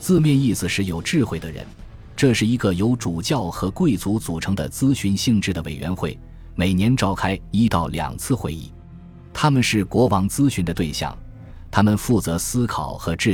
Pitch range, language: 85-115 Hz, Chinese